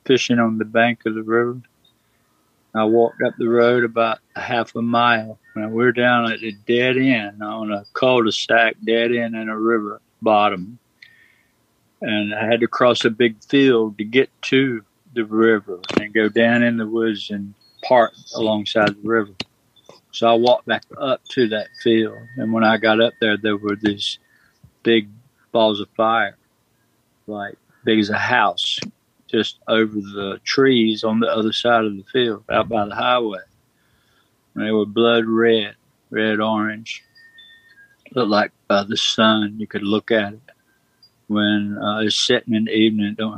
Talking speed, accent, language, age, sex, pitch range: 170 wpm, American, English, 50-69, male, 110-120 Hz